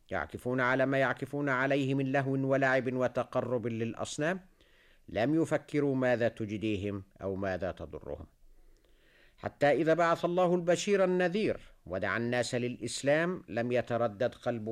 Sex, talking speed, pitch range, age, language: male, 120 wpm, 100-150 Hz, 50-69, Arabic